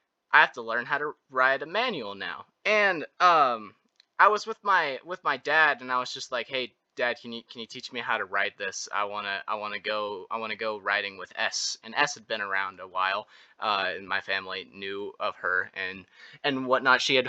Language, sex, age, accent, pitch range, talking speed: English, male, 20-39, American, 115-135 Hz, 230 wpm